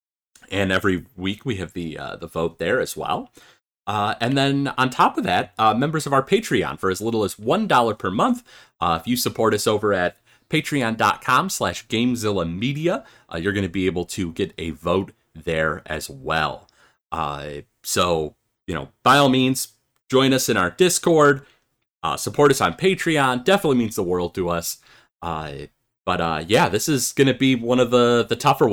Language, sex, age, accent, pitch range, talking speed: English, male, 30-49, American, 90-135 Hz, 190 wpm